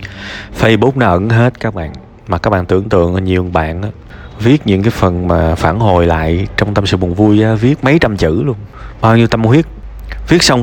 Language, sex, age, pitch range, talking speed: Vietnamese, male, 20-39, 100-135 Hz, 210 wpm